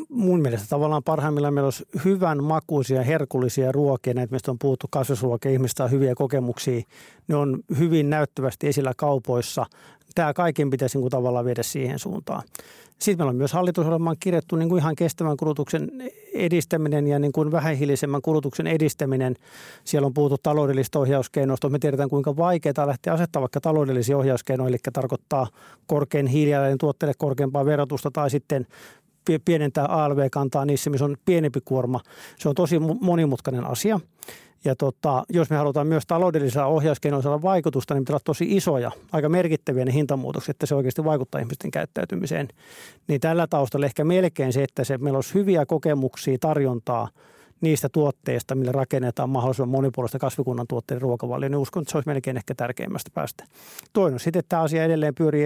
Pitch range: 135-160 Hz